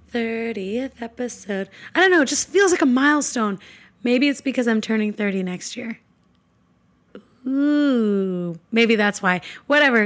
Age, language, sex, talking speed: 20-39, English, female, 145 wpm